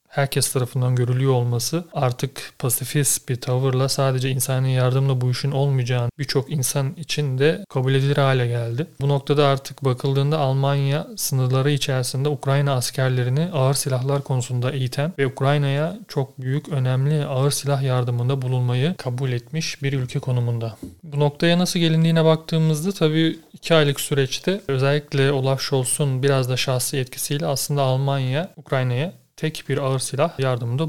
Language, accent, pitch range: Turkish, native, 130-150 Hz